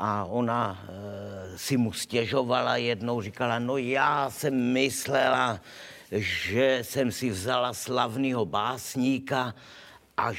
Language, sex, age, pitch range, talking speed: Slovak, male, 50-69, 115-150 Hz, 105 wpm